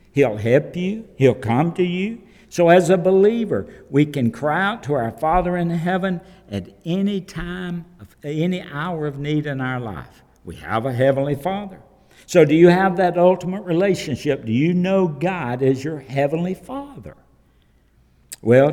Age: 60-79